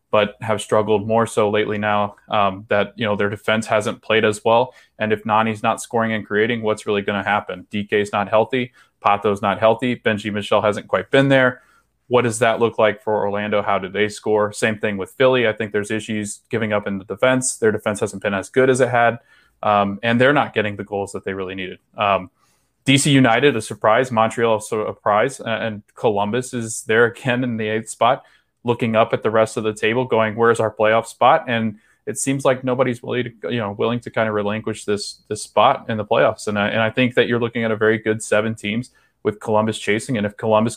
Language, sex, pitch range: English, male, 105-120 Hz